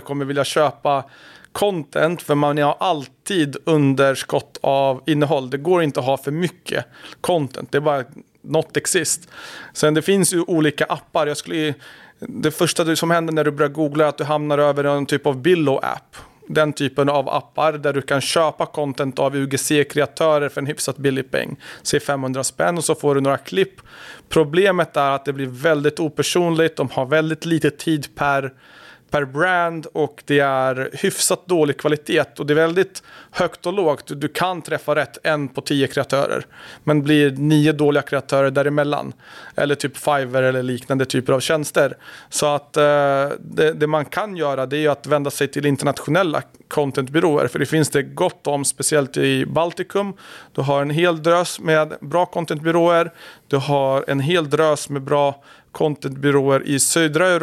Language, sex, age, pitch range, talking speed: Swedish, male, 40-59, 140-160 Hz, 175 wpm